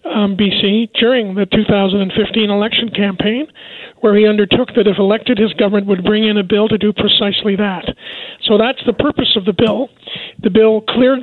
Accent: American